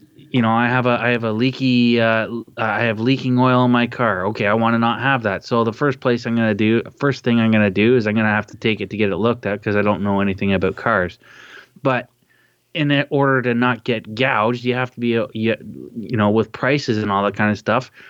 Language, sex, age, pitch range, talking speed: English, male, 20-39, 110-135 Hz, 260 wpm